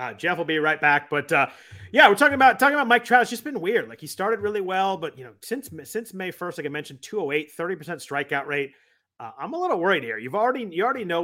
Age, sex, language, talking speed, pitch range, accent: 30-49, male, English, 270 wpm, 135-180 Hz, American